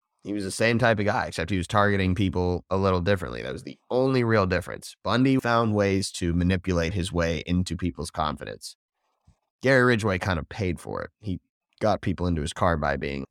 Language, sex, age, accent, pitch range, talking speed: English, male, 20-39, American, 85-105 Hz, 205 wpm